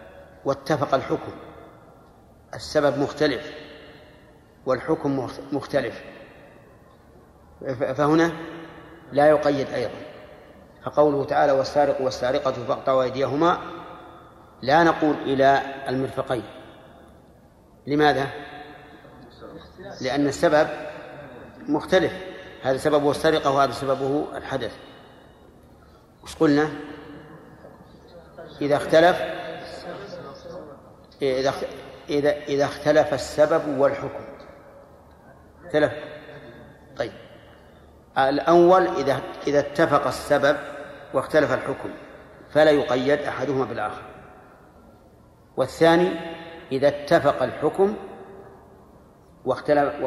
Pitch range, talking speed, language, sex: 135-155 Hz, 70 wpm, Arabic, male